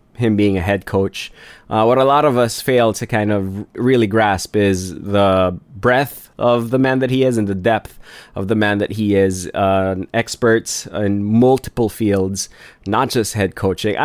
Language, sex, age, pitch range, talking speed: English, male, 20-39, 105-130 Hz, 190 wpm